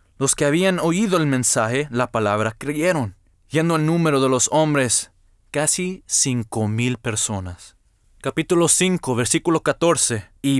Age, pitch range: 20-39, 115-160 Hz